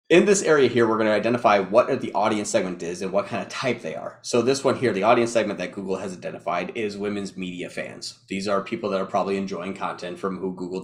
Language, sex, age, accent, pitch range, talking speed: English, male, 30-49, American, 100-135 Hz, 250 wpm